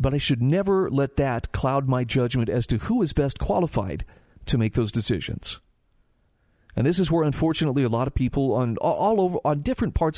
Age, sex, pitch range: 40-59, male, 120-155 Hz